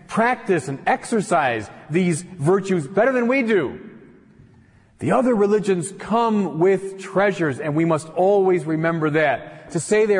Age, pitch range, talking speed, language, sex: 40-59, 135-200 Hz, 140 wpm, English, male